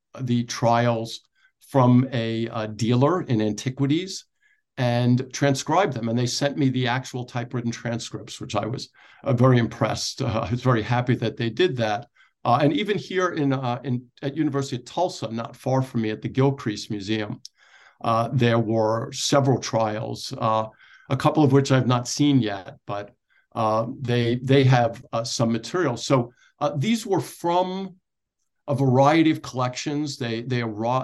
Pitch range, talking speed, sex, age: 115-135 Hz, 170 wpm, male, 50-69